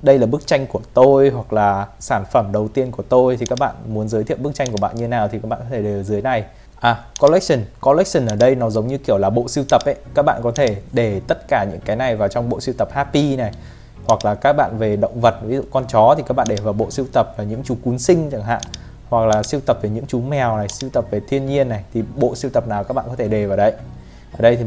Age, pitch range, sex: 20-39, 110-135 Hz, male